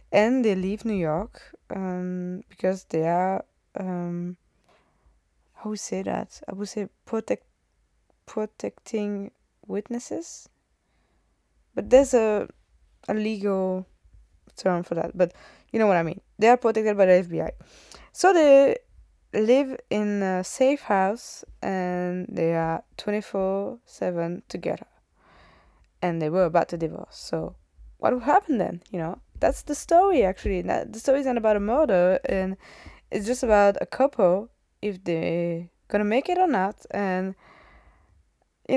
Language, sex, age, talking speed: French, female, 20-39, 140 wpm